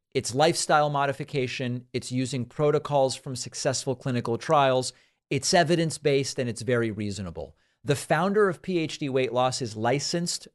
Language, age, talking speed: English, 40-59, 140 wpm